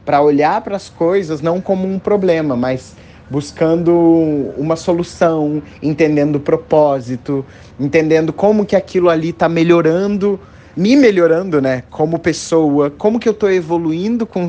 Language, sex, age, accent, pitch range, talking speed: Portuguese, male, 20-39, Brazilian, 130-170 Hz, 135 wpm